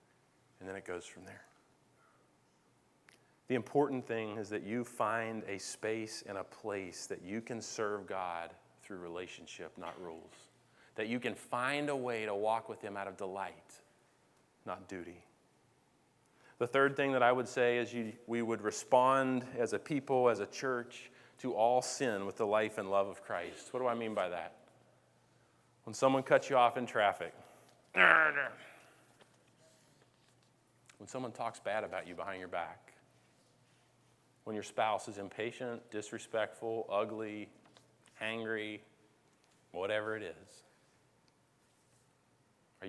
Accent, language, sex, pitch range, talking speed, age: American, English, male, 110-130 Hz, 145 wpm, 30-49